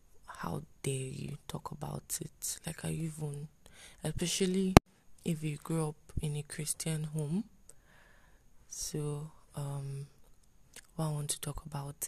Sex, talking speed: female, 130 wpm